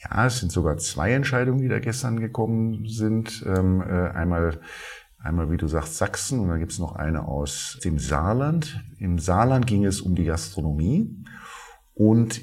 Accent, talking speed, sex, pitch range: German, 170 wpm, male, 85-105 Hz